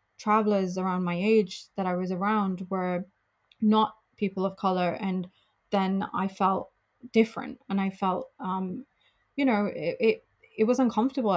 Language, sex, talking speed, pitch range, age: English, female, 155 wpm, 185-215 Hz, 20-39